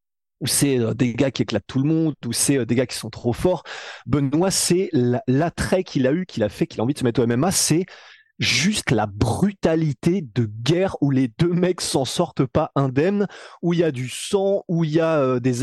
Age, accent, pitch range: 30-49, French, 130-180 Hz